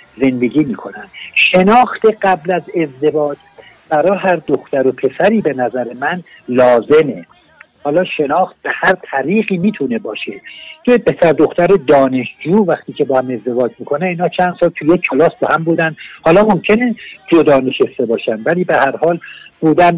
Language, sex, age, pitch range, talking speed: Persian, male, 60-79, 135-190 Hz, 145 wpm